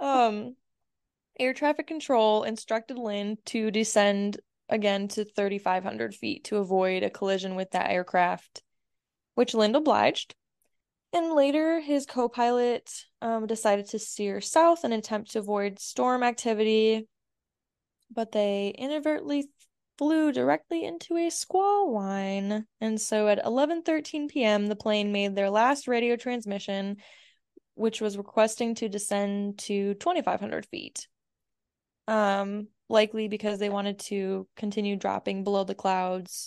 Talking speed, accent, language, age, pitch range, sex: 130 wpm, American, English, 10-29, 200-245 Hz, female